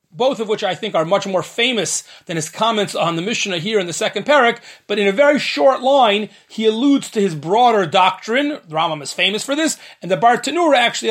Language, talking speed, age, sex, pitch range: English, 225 wpm, 30-49, male, 195-270 Hz